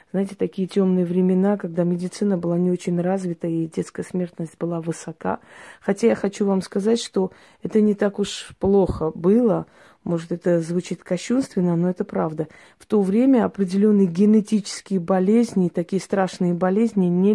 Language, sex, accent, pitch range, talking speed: Russian, female, native, 175-205 Hz, 150 wpm